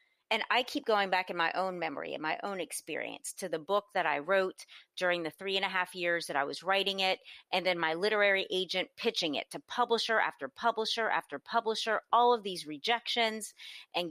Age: 30-49